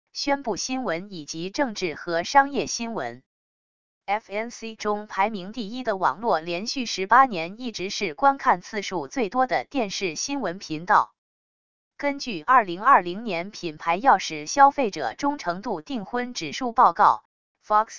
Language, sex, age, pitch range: English, female, 20-39, 175-250 Hz